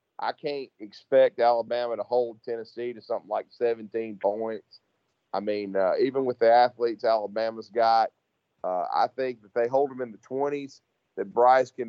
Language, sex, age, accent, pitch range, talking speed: English, male, 40-59, American, 115-130 Hz, 170 wpm